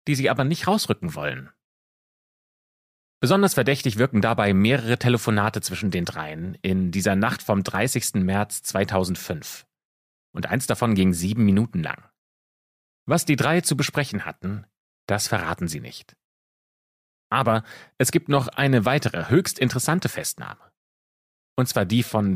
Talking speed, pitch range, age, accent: 140 wpm, 95-125 Hz, 30-49, German